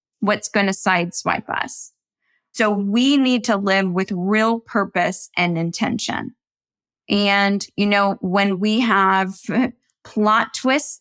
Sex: female